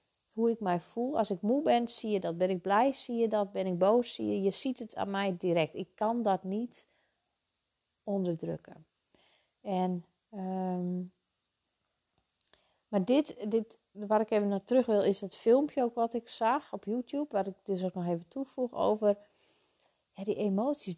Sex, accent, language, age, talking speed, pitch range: female, Dutch, Dutch, 30-49, 175 wpm, 185-235 Hz